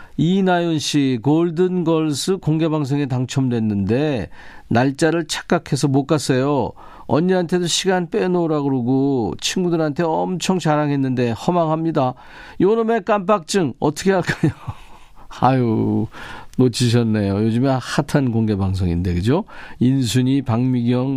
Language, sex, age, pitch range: Korean, male, 50-69, 115-170 Hz